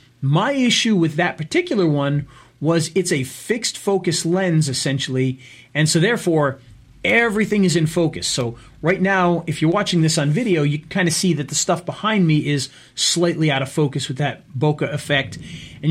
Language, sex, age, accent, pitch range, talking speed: English, male, 40-59, American, 130-170 Hz, 180 wpm